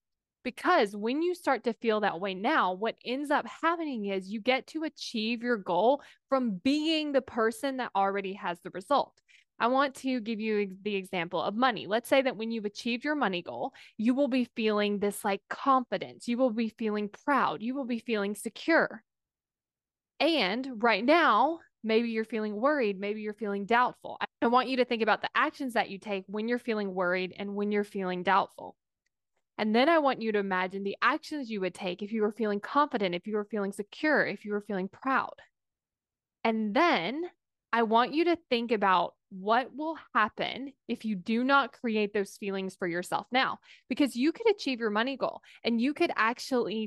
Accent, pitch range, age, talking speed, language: American, 205-270 Hz, 20-39, 195 wpm, English